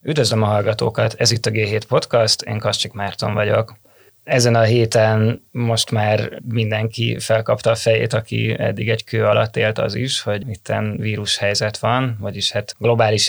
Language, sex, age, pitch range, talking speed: Hungarian, male, 20-39, 110-120 Hz, 165 wpm